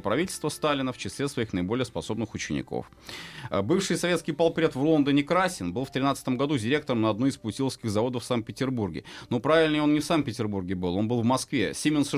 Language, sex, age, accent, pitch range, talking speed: Russian, male, 30-49, native, 105-145 Hz, 185 wpm